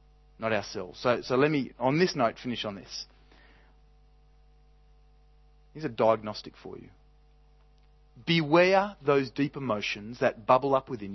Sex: male